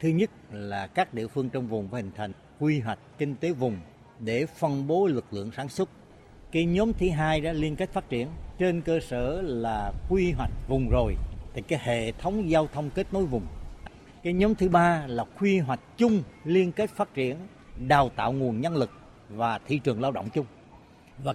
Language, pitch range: Vietnamese, 125-175 Hz